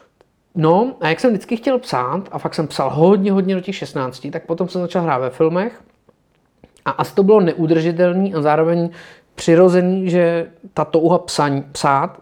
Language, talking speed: Czech, 170 wpm